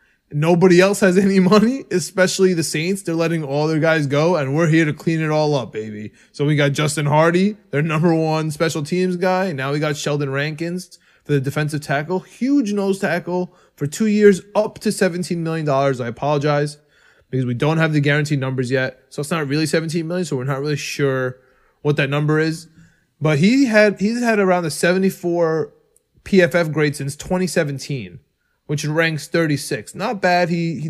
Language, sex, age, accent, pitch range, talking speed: English, male, 20-39, American, 145-185 Hz, 190 wpm